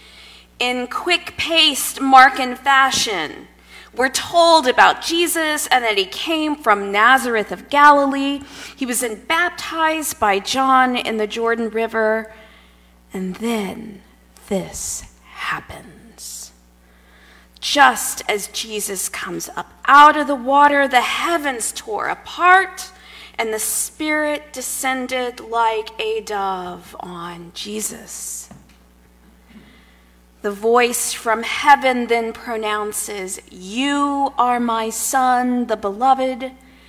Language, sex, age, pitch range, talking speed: English, female, 40-59, 195-285 Hz, 105 wpm